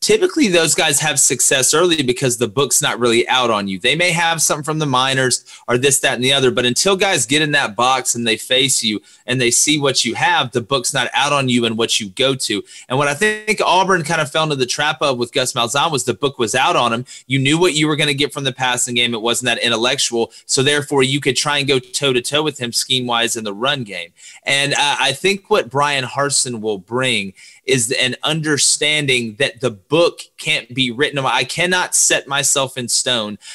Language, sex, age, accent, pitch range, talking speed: English, male, 30-49, American, 120-150 Hz, 240 wpm